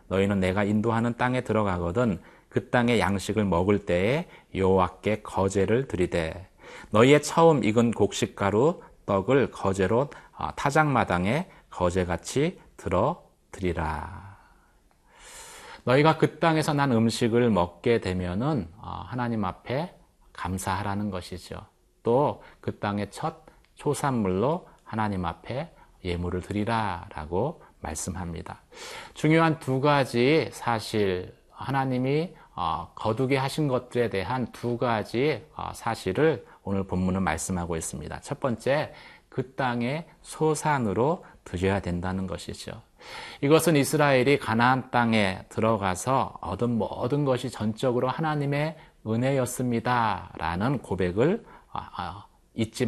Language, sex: Korean, male